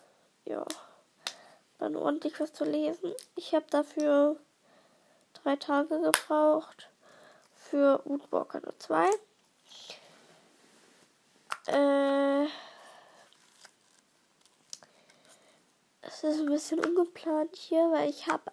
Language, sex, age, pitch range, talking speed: German, female, 10-29, 280-325 Hz, 80 wpm